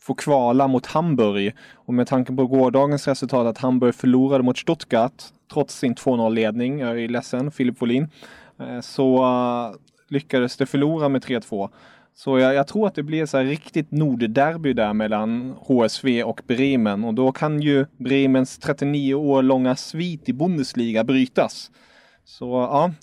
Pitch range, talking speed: 125-145 Hz, 155 wpm